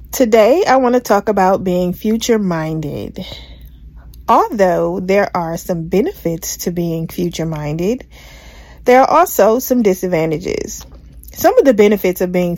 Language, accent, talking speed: English, American, 125 wpm